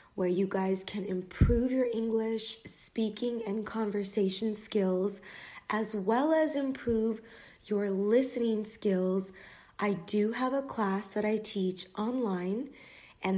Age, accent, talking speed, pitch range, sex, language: 20-39, American, 125 wpm, 195-230 Hz, female, English